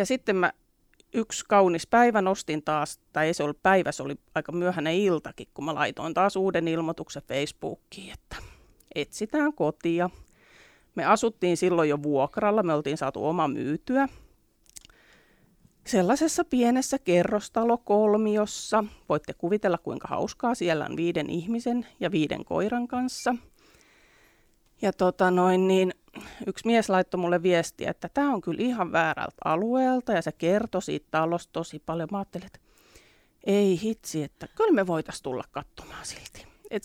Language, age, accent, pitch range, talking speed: Finnish, 30-49, native, 165-230 Hz, 145 wpm